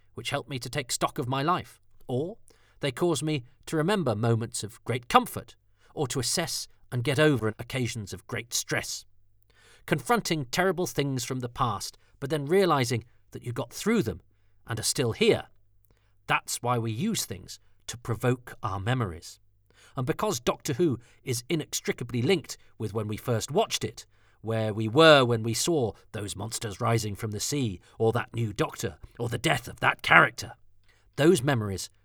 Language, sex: English, male